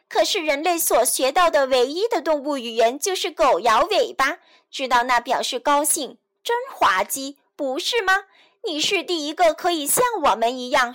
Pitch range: 250-345 Hz